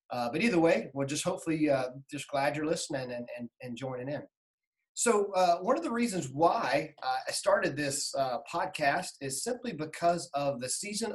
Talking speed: 195 wpm